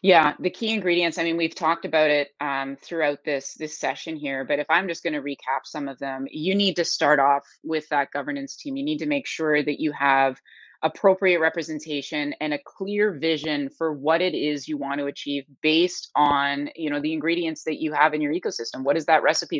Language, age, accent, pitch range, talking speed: English, 30-49, American, 145-180 Hz, 225 wpm